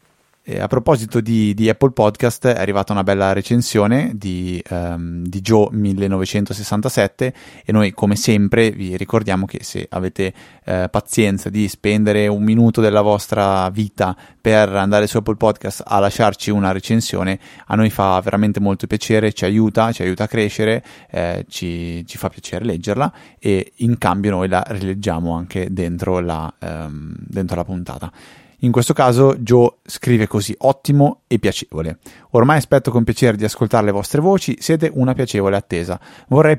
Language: Italian